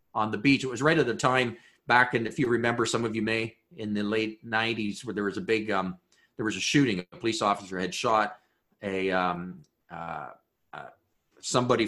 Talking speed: 210 wpm